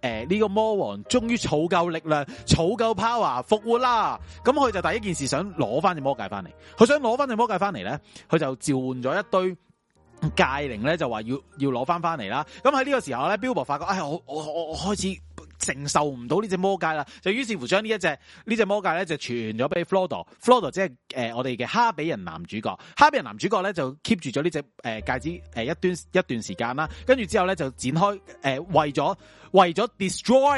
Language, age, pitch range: Chinese, 30-49, 125-190 Hz